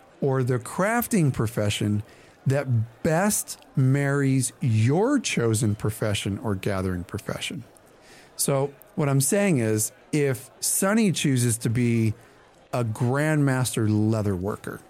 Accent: American